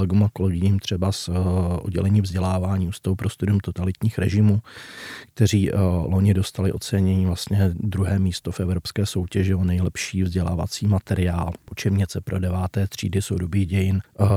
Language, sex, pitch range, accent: Czech, male, 95-105 Hz, native